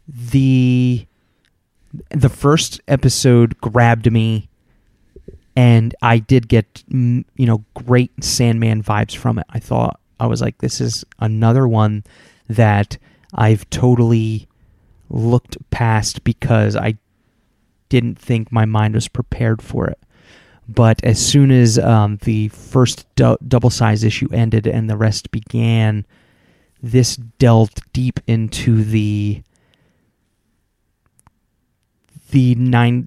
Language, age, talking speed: English, 30-49, 115 wpm